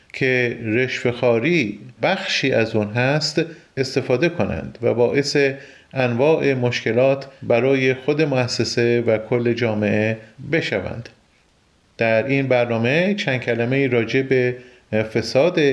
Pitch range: 125-160 Hz